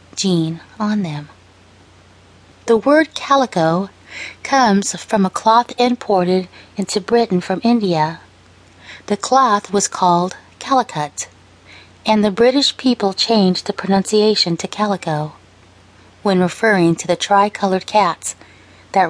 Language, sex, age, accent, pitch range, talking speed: English, female, 30-49, American, 150-220 Hz, 115 wpm